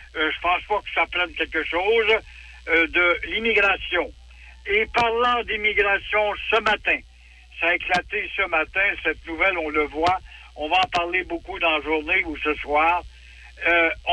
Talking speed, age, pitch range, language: 165 wpm, 60-79, 165-215 Hz, French